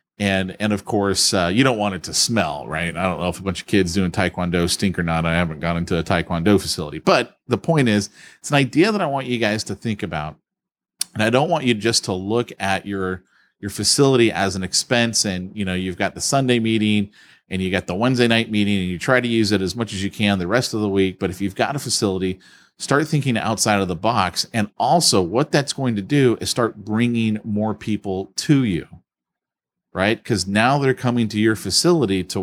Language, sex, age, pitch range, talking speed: English, male, 30-49, 100-125 Hz, 235 wpm